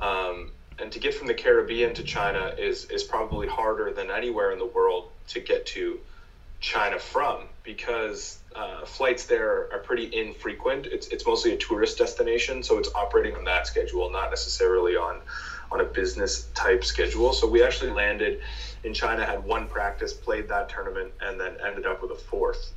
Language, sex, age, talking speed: English, male, 20-39, 180 wpm